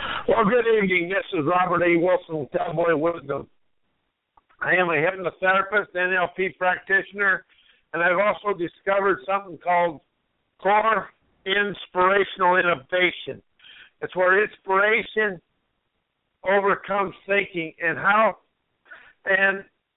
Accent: American